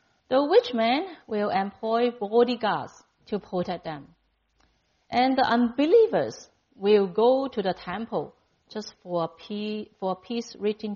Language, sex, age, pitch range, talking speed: English, female, 50-69, 185-255 Hz, 130 wpm